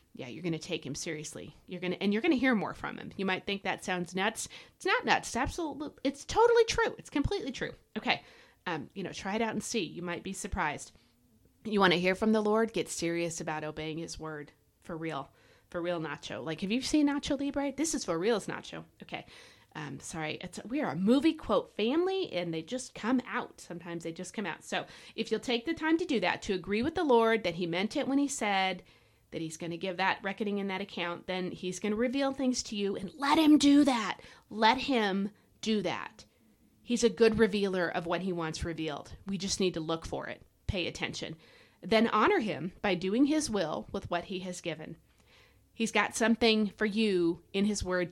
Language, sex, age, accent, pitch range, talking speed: English, female, 30-49, American, 175-240 Hz, 230 wpm